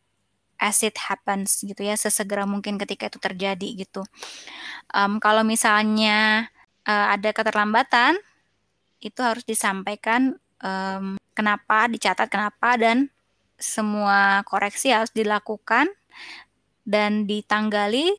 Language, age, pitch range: Indonesian, 20-39, 200-225 Hz